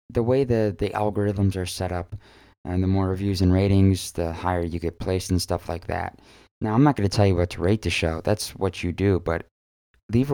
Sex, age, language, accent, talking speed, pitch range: male, 20-39, English, American, 240 wpm, 95-110 Hz